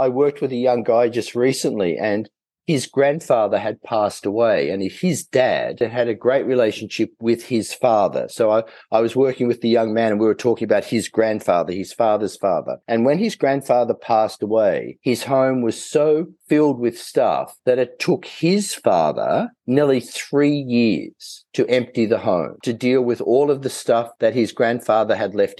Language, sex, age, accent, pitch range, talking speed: English, male, 50-69, Australian, 120-155 Hz, 190 wpm